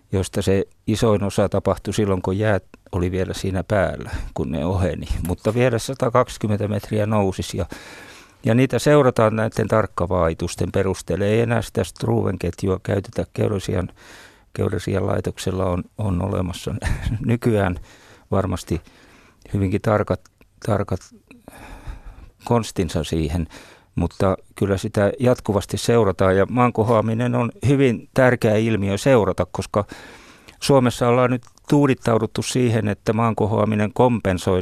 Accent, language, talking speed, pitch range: native, Finnish, 115 wpm, 95-115 Hz